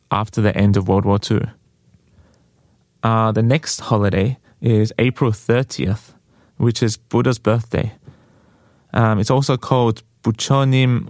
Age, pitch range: 20-39, 110-125 Hz